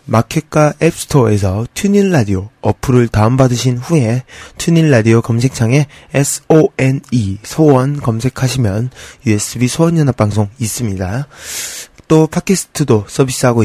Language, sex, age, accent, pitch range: Korean, male, 20-39, native, 110-140 Hz